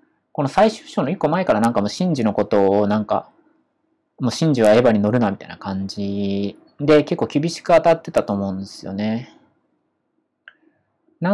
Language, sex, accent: Japanese, male, native